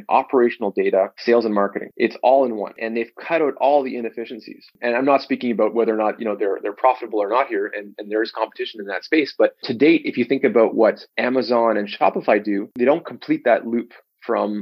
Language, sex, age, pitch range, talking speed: English, male, 20-39, 105-120 Hz, 240 wpm